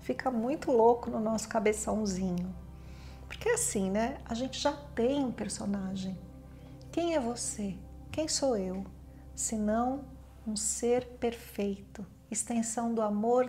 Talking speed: 135 wpm